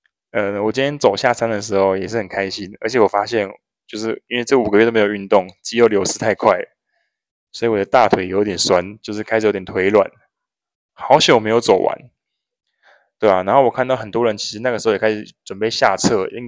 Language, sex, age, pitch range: Chinese, male, 20-39, 100-120 Hz